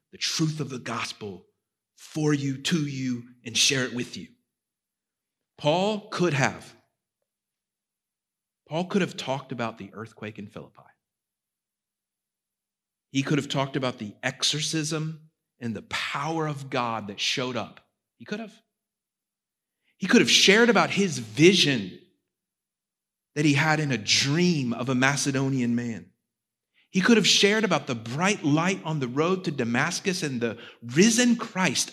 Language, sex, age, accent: English, male, 40-59, American